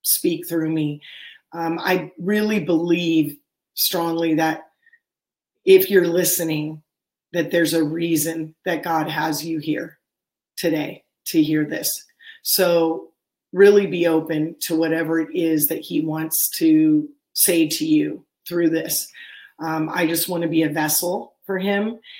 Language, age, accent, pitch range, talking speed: English, 30-49, American, 160-185 Hz, 140 wpm